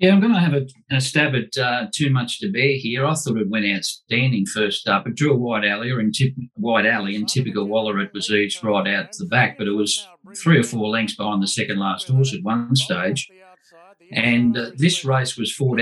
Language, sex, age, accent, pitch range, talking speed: English, male, 50-69, Australian, 105-135 Hz, 240 wpm